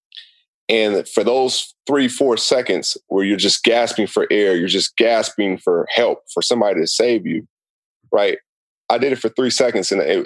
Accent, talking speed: American, 180 wpm